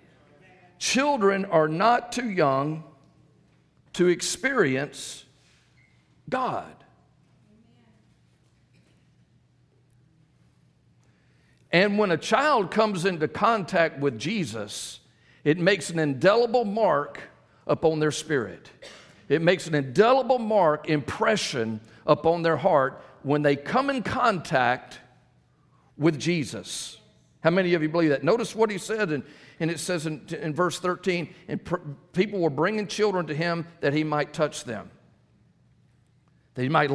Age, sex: 50-69, male